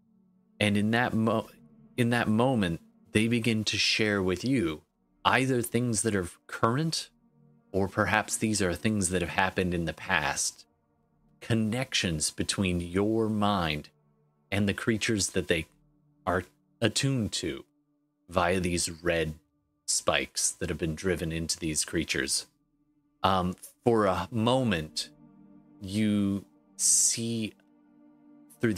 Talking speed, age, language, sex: 125 wpm, 30-49, English, male